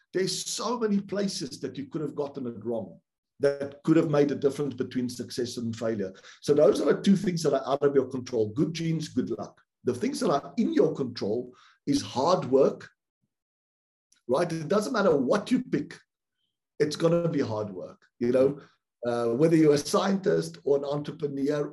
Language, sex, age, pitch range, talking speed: English, male, 50-69, 130-165 Hz, 195 wpm